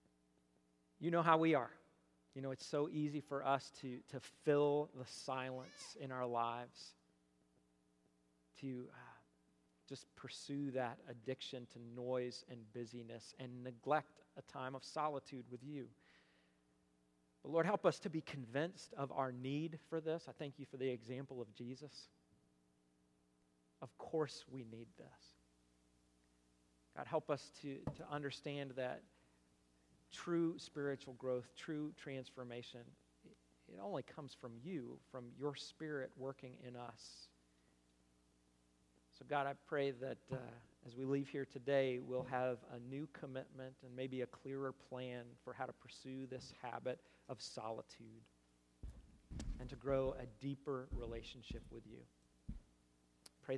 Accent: American